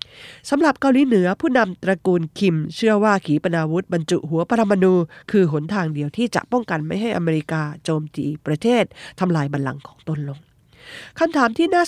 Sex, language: female, Japanese